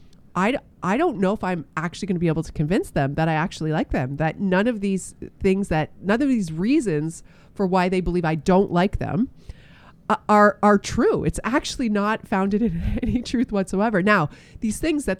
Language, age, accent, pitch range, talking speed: English, 30-49, American, 155-205 Hz, 205 wpm